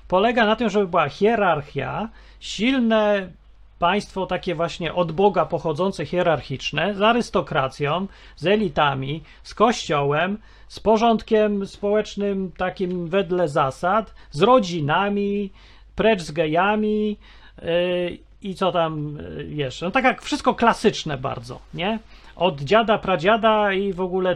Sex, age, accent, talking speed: male, 40-59, native, 115 wpm